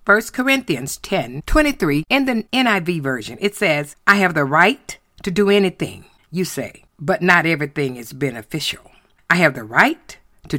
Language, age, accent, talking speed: English, 50-69, American, 170 wpm